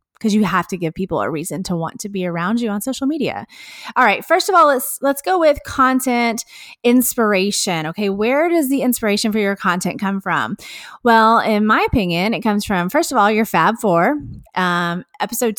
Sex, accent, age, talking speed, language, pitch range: female, American, 30-49, 205 wpm, English, 190-240 Hz